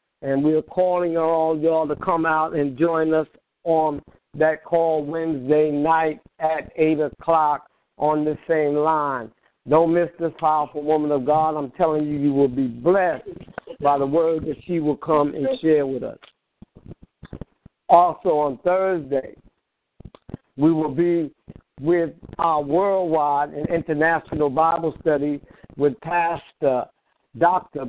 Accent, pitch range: American, 145-165 Hz